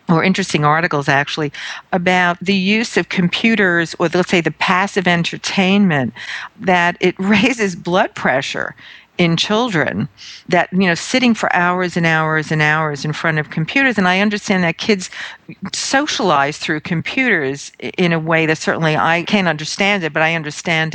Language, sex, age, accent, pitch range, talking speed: English, female, 50-69, American, 160-200 Hz, 160 wpm